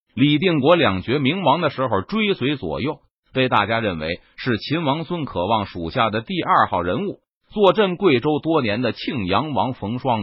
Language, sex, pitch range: Chinese, male, 110-165 Hz